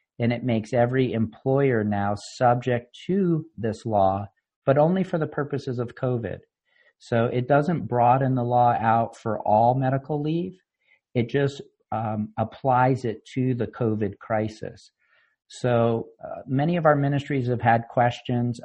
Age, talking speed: 50-69, 150 wpm